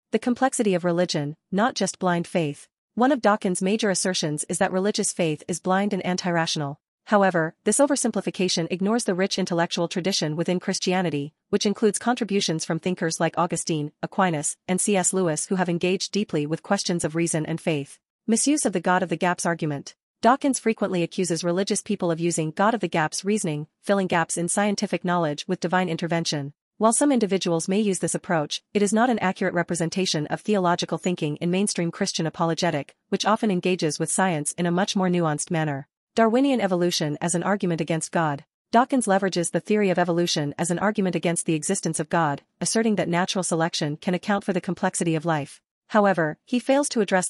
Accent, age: American, 30-49